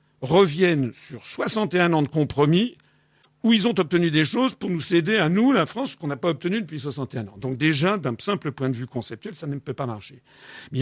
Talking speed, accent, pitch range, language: 220 wpm, French, 125-175 Hz, French